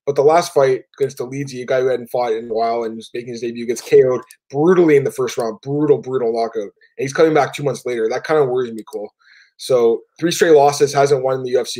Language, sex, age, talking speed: English, male, 20-39, 255 wpm